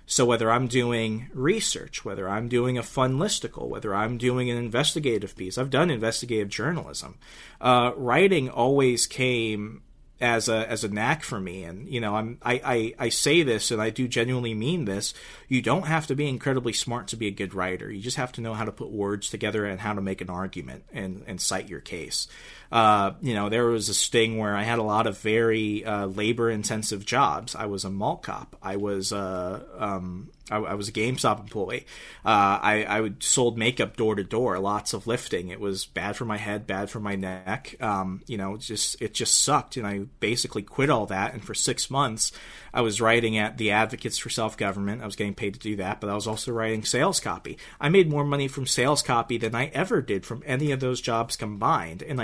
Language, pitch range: English, 105-125 Hz